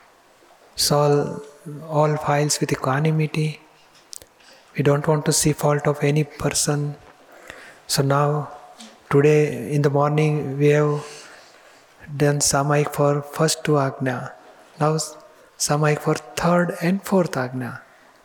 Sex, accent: male, native